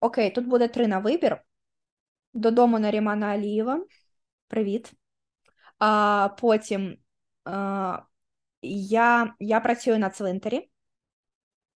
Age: 20-39